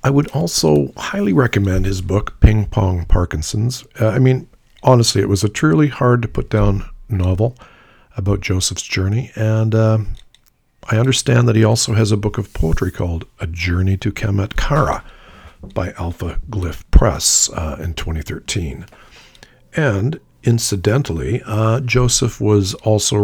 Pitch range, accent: 85-110 Hz, American